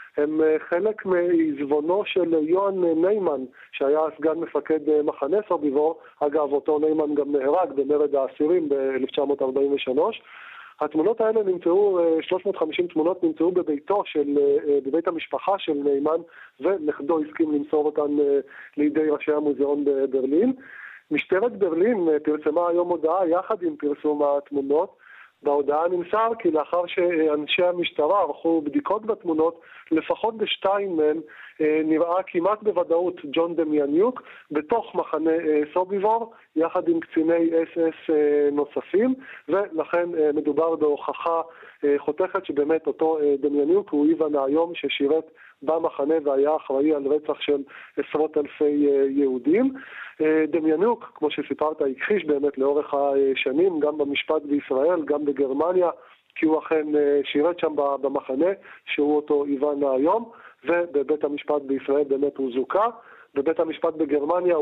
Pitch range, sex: 145-175 Hz, male